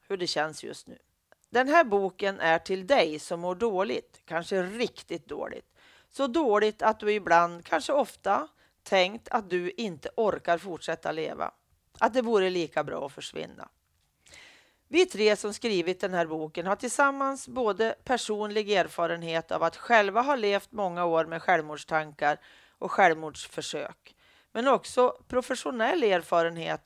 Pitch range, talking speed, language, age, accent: 165-235 Hz, 145 wpm, Swedish, 40-59, native